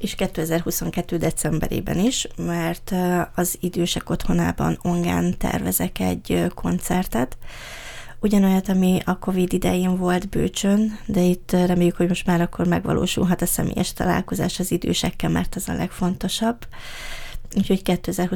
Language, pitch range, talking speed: Hungarian, 170-190 Hz, 120 wpm